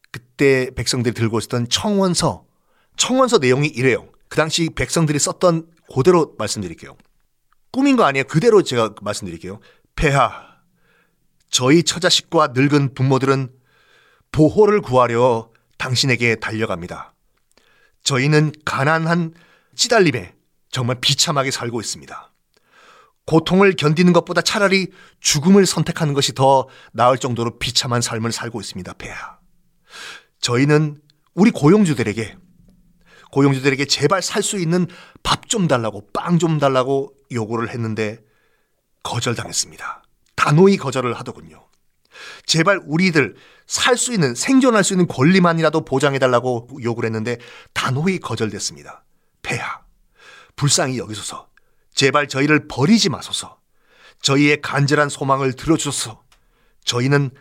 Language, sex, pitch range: Korean, male, 125-170 Hz